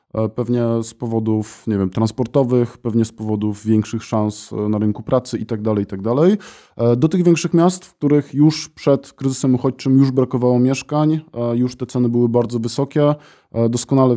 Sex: male